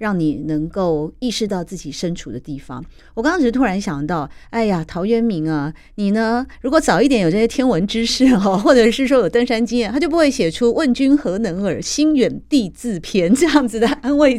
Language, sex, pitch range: Chinese, female, 170-235 Hz